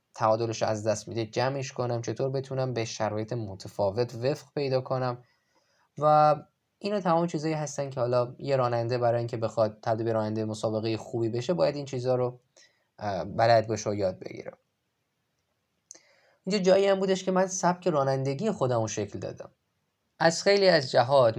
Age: 10-29